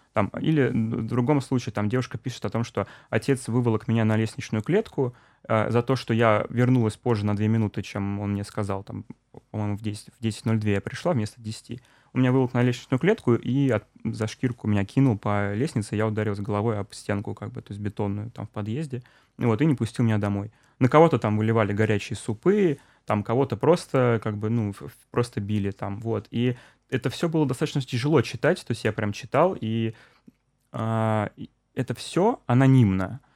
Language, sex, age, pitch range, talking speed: Russian, male, 20-39, 105-125 Hz, 190 wpm